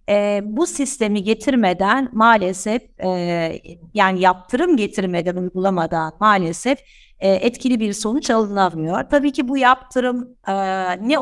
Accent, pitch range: native, 190-255 Hz